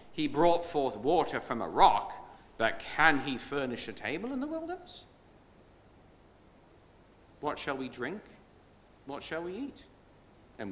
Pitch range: 115-160 Hz